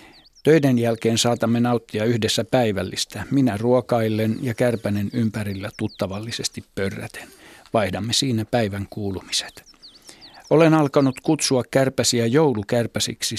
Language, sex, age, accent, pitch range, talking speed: Finnish, male, 60-79, native, 105-125 Hz, 100 wpm